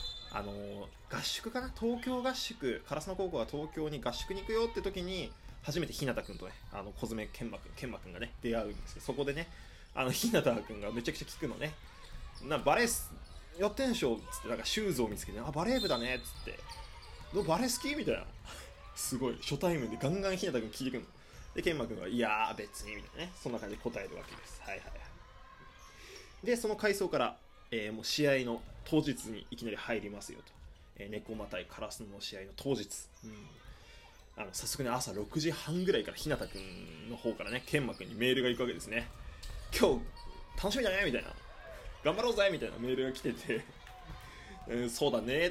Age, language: 20-39, Japanese